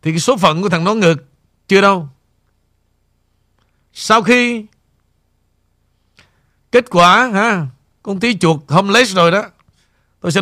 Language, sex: Vietnamese, male